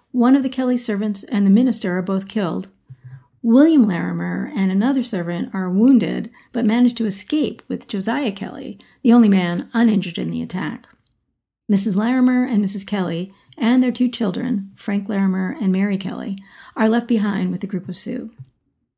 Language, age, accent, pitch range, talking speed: English, 40-59, American, 195-245 Hz, 170 wpm